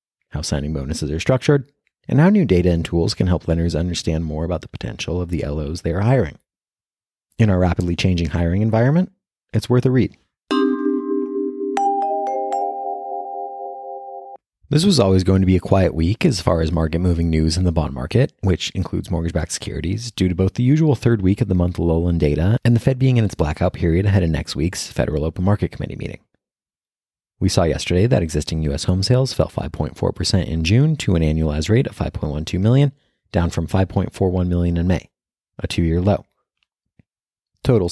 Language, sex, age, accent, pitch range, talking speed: English, male, 30-49, American, 85-110 Hz, 180 wpm